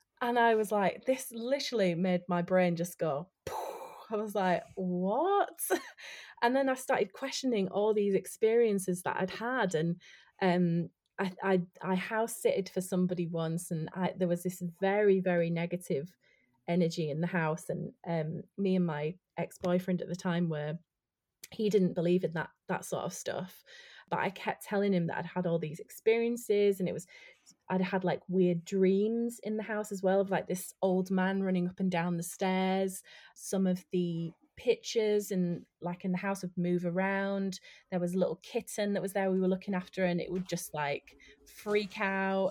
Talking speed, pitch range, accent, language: 190 wpm, 175-200 Hz, British, English